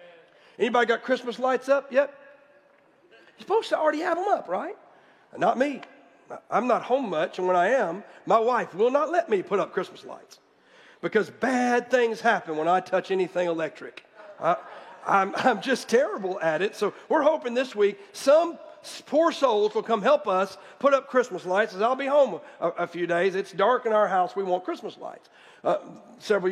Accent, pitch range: American, 195-275 Hz